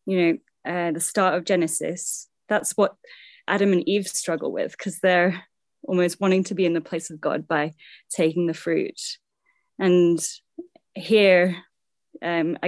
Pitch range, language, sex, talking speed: 170-205 Hz, English, female, 155 wpm